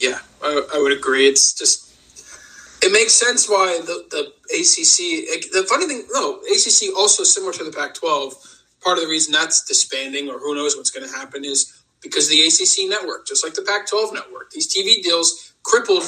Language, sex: English, male